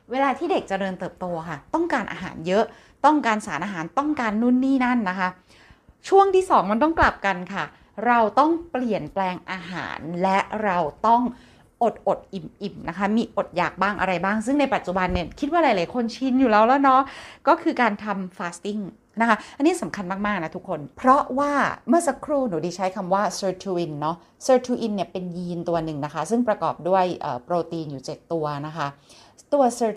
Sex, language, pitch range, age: female, Thai, 175-245 Hz, 30-49